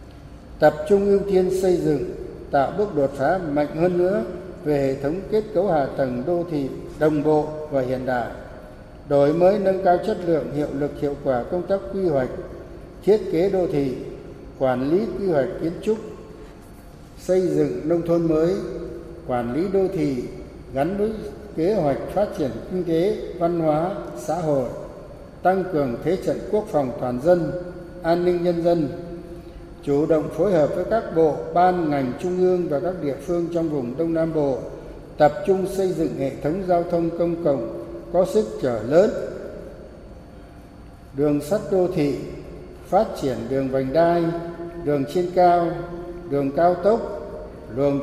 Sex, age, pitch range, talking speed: male, 60-79, 140-180 Hz, 165 wpm